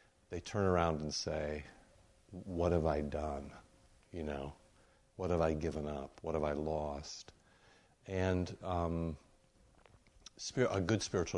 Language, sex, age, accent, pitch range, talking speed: English, male, 50-69, American, 80-95 Hz, 130 wpm